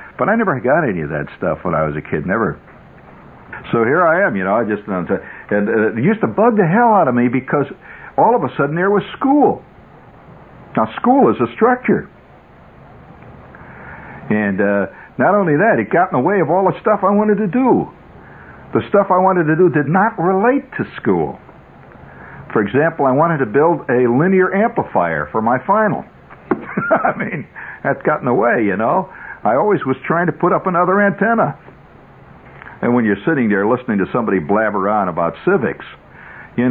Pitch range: 125-190 Hz